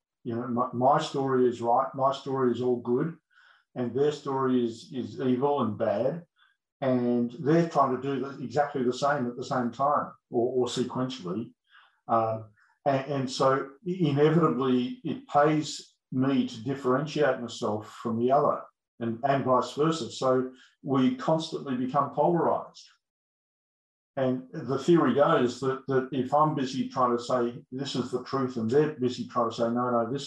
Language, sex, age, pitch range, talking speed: English, male, 50-69, 120-140 Hz, 165 wpm